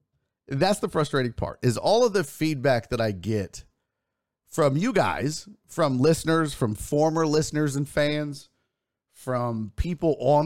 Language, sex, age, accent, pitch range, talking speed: English, male, 30-49, American, 125-195 Hz, 145 wpm